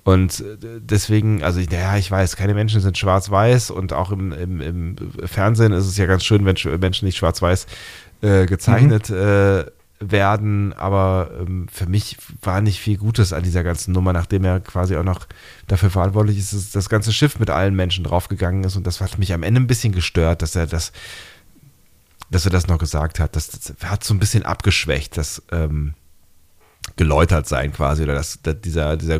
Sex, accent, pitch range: male, German, 90-105 Hz